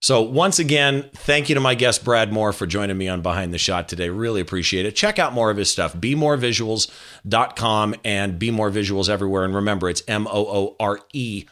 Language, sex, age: English, male, 40-59